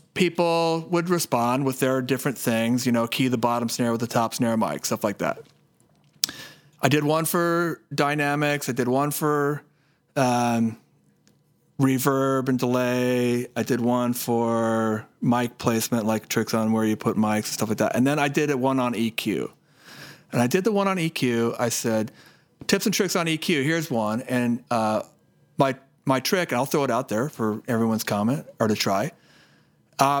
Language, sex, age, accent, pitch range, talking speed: English, male, 40-59, American, 115-145 Hz, 185 wpm